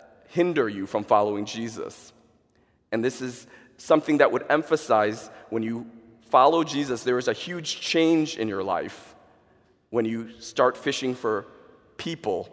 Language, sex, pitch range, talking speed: English, male, 115-160 Hz, 145 wpm